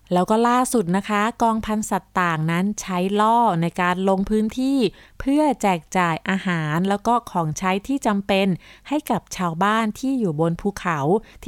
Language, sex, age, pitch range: Thai, female, 30-49, 175-225 Hz